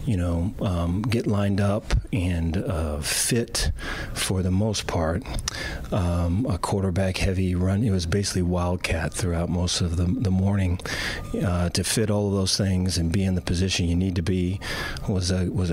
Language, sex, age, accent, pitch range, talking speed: English, male, 40-59, American, 85-100 Hz, 180 wpm